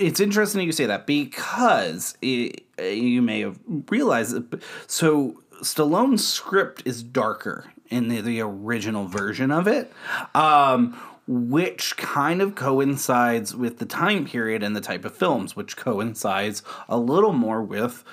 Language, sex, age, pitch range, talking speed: English, male, 30-49, 115-160 Hz, 145 wpm